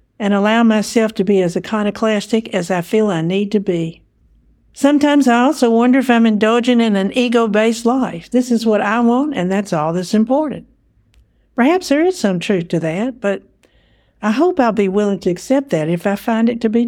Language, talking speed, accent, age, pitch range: English, 205 wpm, American, 60-79, 190-240 Hz